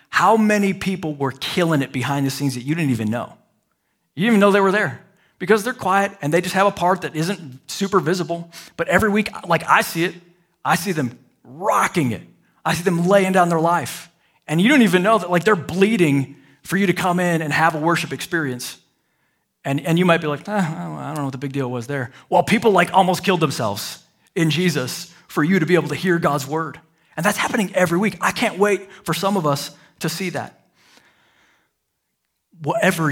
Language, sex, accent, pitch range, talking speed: English, male, American, 140-190 Hz, 220 wpm